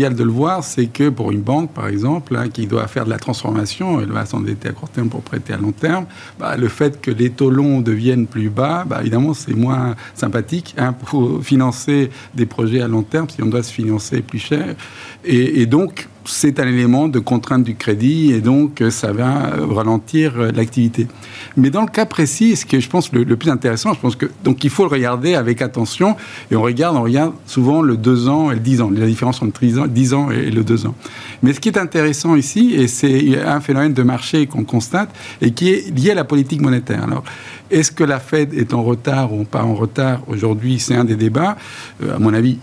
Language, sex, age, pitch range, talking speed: French, male, 50-69, 115-145 Hz, 225 wpm